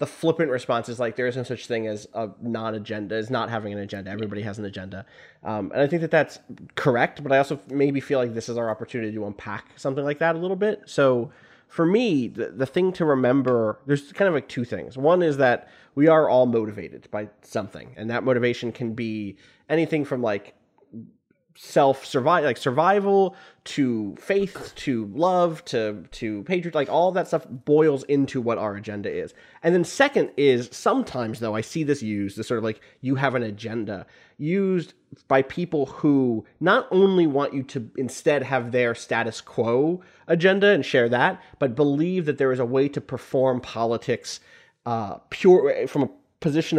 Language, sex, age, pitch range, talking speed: English, male, 20-39, 115-155 Hz, 190 wpm